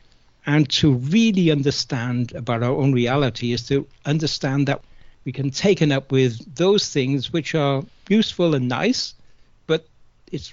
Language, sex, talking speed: English, male, 155 wpm